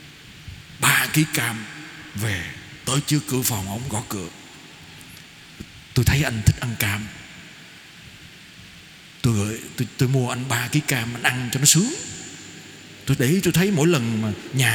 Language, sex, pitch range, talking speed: Vietnamese, male, 125-175 Hz, 150 wpm